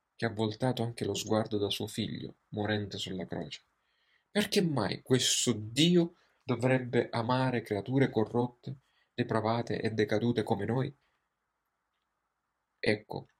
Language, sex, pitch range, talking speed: Italian, male, 105-130 Hz, 115 wpm